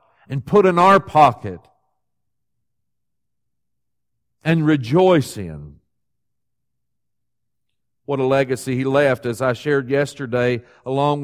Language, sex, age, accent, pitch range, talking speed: English, male, 50-69, American, 115-145 Hz, 95 wpm